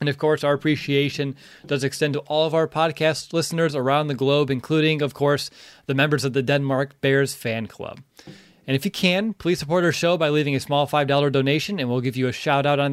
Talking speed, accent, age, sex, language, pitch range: 225 wpm, American, 20-39, male, English, 130-155 Hz